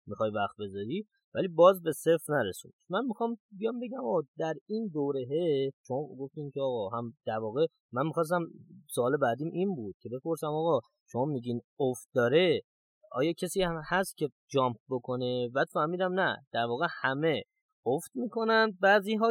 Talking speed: 160 wpm